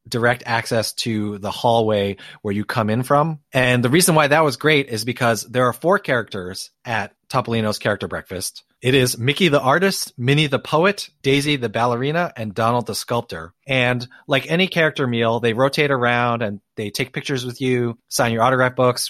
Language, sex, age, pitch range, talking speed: English, male, 30-49, 115-140 Hz, 190 wpm